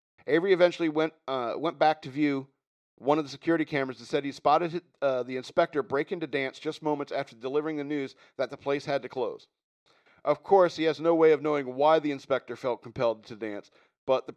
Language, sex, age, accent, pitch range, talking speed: English, male, 50-69, American, 130-160 Hz, 215 wpm